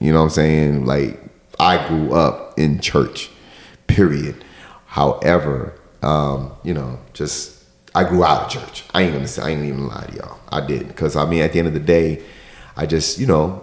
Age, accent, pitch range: 30-49, American, 70-80 Hz